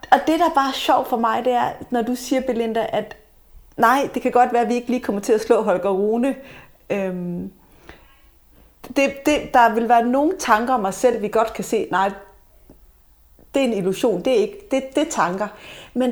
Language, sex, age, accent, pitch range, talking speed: Danish, female, 30-49, native, 195-255 Hz, 215 wpm